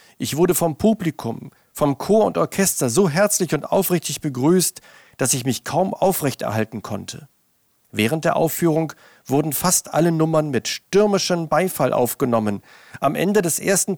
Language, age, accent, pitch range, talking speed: German, 50-69, German, 125-175 Hz, 145 wpm